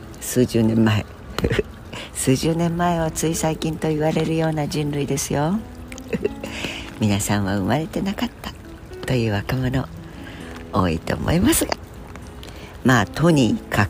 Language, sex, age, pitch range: Japanese, female, 60-79, 90-130 Hz